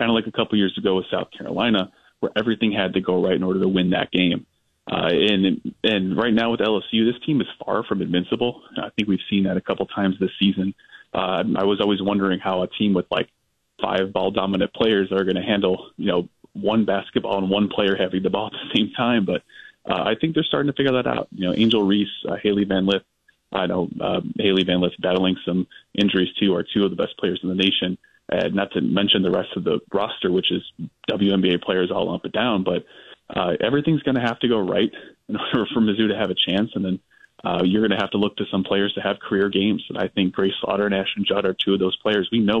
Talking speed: 255 wpm